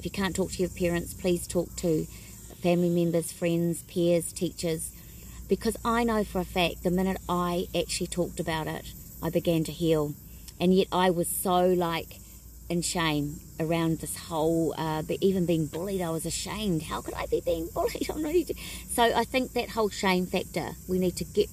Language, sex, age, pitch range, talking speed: English, female, 40-59, 165-195 Hz, 190 wpm